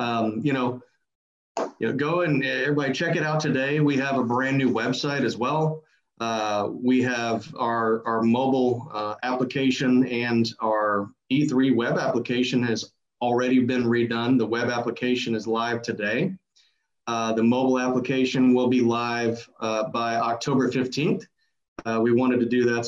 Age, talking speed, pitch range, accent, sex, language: 40-59, 155 wpm, 115-135 Hz, American, male, English